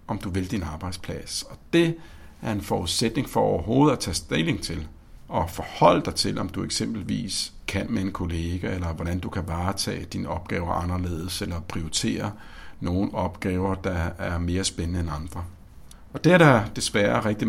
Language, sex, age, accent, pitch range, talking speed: Danish, male, 60-79, native, 85-110 Hz, 175 wpm